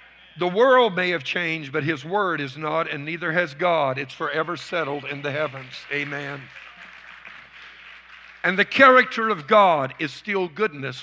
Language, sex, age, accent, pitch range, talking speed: English, male, 50-69, American, 145-190 Hz, 160 wpm